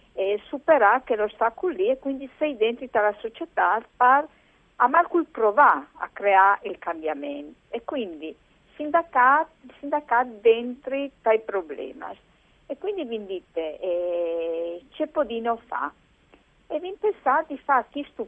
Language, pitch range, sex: Italian, 165-255 Hz, female